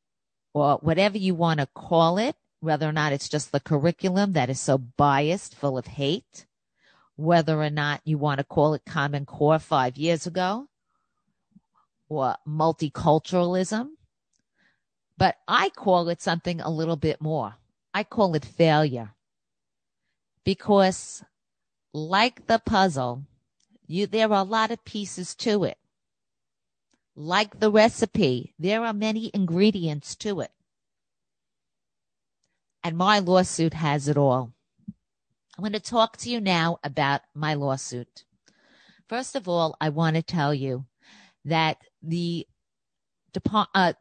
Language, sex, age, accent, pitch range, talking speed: English, female, 50-69, American, 150-200 Hz, 135 wpm